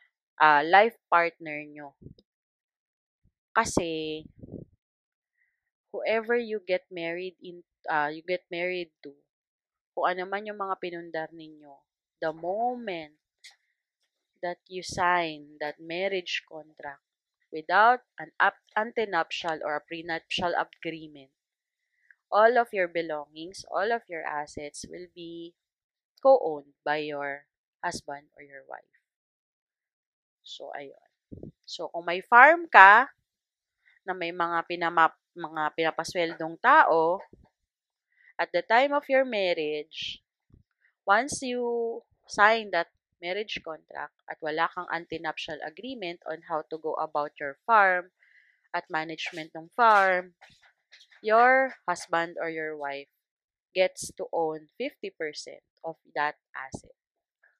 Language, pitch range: Filipino, 155-205 Hz